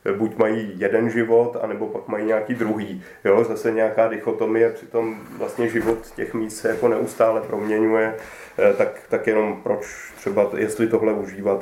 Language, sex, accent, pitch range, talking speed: Czech, male, native, 110-130 Hz, 155 wpm